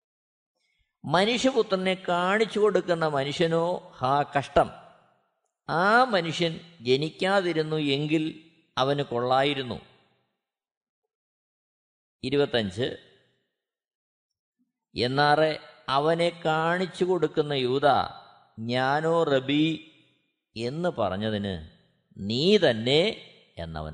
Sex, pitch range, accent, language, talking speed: male, 155-240 Hz, native, Malayalam, 65 wpm